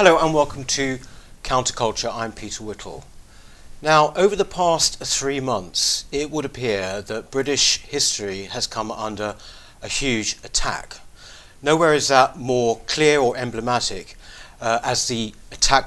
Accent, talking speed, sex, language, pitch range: British, 140 wpm, male, English, 110-140 Hz